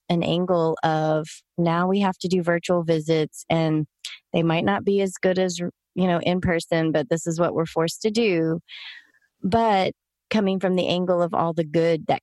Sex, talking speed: female, 195 wpm